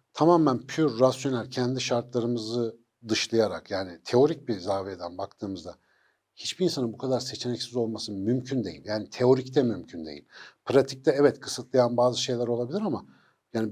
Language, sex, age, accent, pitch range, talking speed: Turkish, male, 60-79, native, 120-150 Hz, 140 wpm